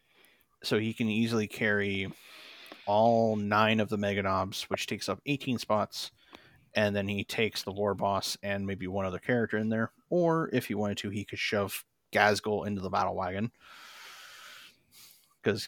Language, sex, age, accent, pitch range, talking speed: English, male, 30-49, American, 100-120 Hz, 170 wpm